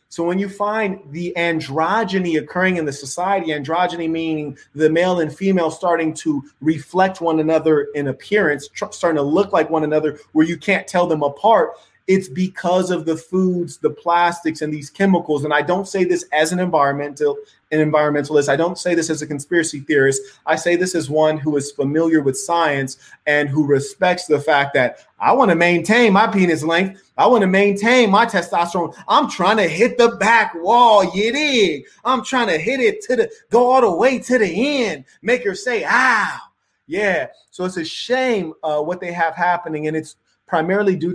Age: 30-49